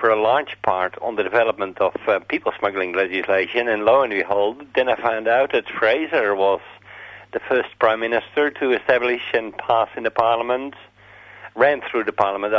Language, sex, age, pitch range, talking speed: English, male, 50-69, 105-125 Hz, 175 wpm